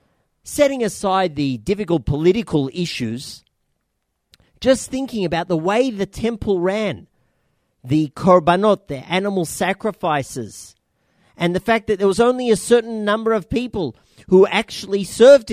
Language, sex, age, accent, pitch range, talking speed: English, male, 40-59, Australian, 145-200 Hz, 130 wpm